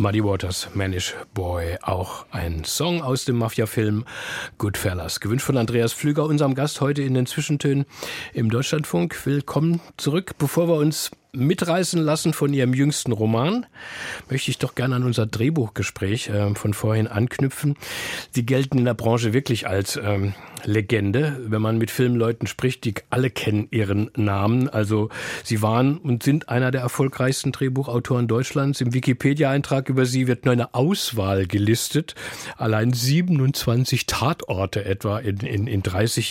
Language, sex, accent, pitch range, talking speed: German, male, German, 110-140 Hz, 150 wpm